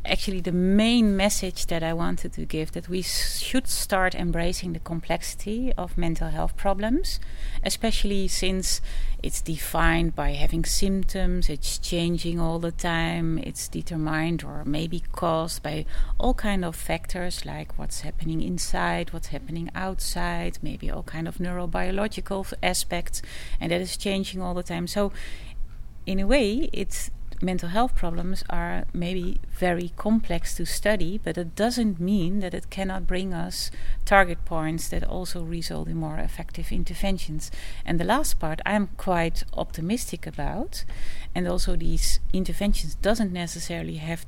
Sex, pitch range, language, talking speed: female, 165-195 Hz, English, 150 wpm